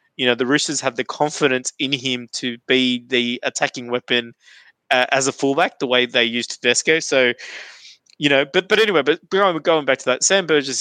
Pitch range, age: 130-185 Hz, 20-39